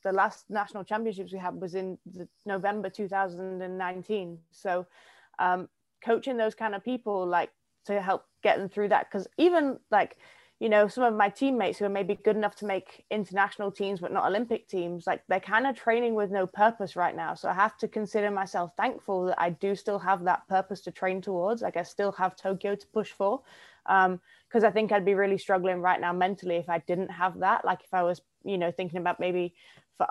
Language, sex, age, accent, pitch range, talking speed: English, female, 20-39, British, 180-210 Hz, 215 wpm